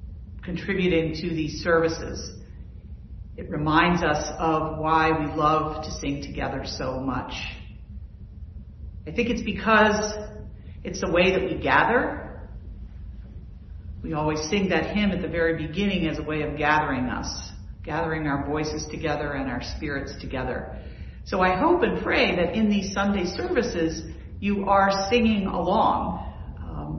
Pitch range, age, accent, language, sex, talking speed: 105-175 Hz, 50-69, American, English, female, 140 wpm